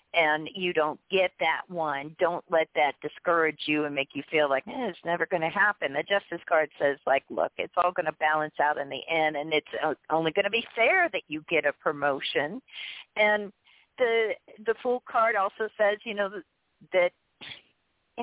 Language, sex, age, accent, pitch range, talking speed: English, female, 50-69, American, 155-210 Hz, 200 wpm